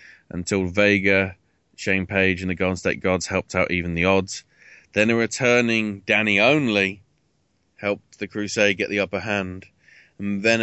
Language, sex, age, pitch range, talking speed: English, male, 20-39, 95-110 Hz, 160 wpm